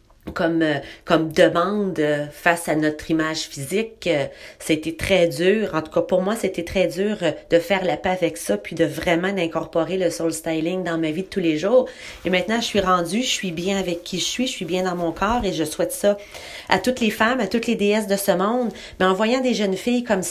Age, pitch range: 30-49, 170-210 Hz